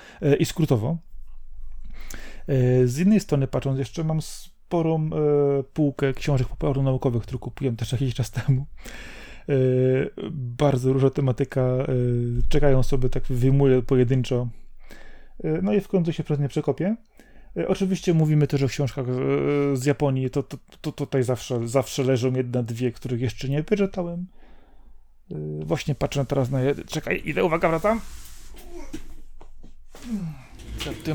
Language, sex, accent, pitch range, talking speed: Polish, male, native, 125-155 Hz, 135 wpm